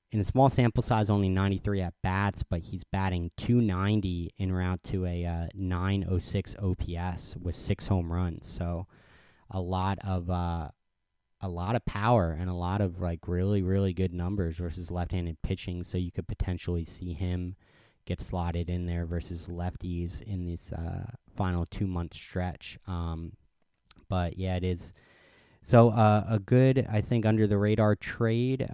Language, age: English, 30-49